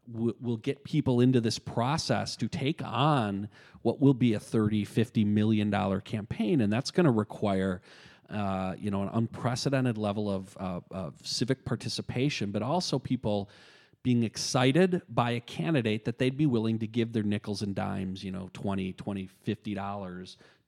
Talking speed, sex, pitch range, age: 165 wpm, male, 100-125 Hz, 40-59